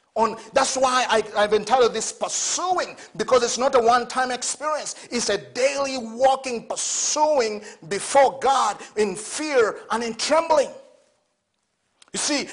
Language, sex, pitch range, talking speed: English, male, 225-300 Hz, 125 wpm